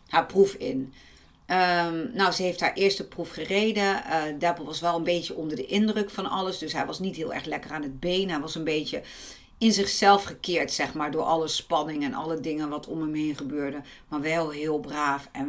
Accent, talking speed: Dutch, 220 wpm